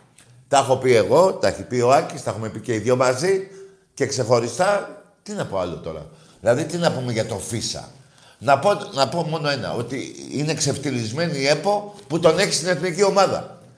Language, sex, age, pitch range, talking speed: Greek, male, 60-79, 125-170 Hz, 200 wpm